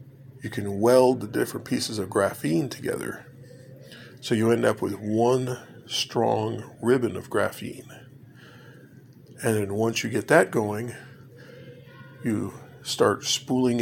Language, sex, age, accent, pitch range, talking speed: English, male, 50-69, American, 115-135 Hz, 125 wpm